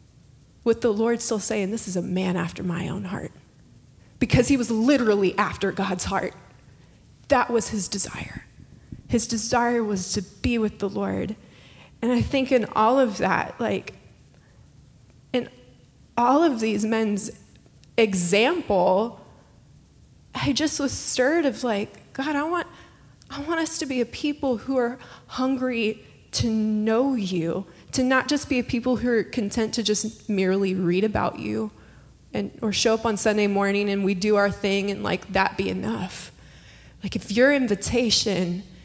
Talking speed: 160 wpm